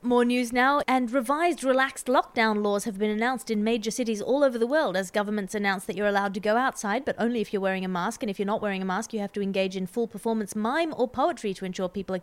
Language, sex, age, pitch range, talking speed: English, female, 30-49, 205-255 Hz, 270 wpm